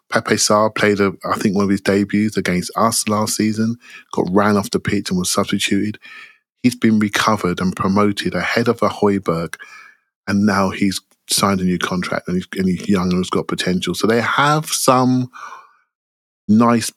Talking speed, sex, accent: 185 wpm, male, British